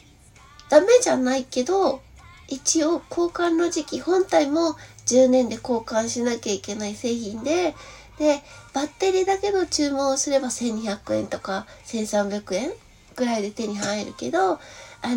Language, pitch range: Japanese, 210-285 Hz